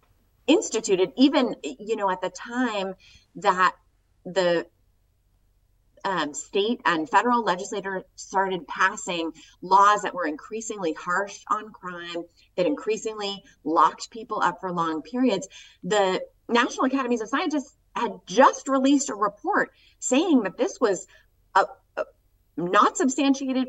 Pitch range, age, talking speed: 175-245 Hz, 30-49, 125 wpm